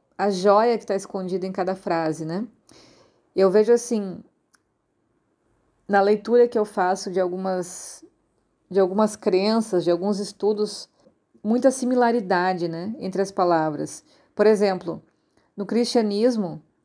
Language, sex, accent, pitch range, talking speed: Portuguese, female, Brazilian, 185-225 Hz, 125 wpm